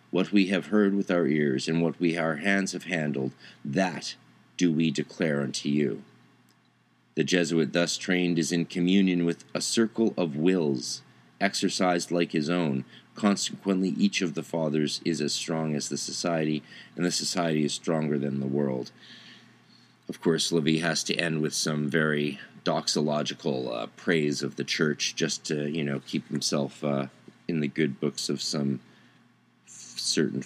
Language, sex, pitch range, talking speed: English, male, 70-85 Hz, 165 wpm